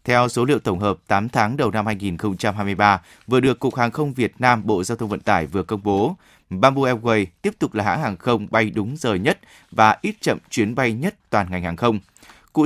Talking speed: 230 wpm